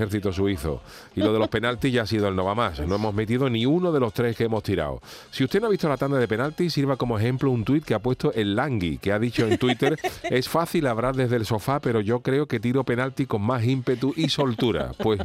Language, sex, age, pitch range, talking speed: Spanish, male, 40-59, 100-125 Hz, 265 wpm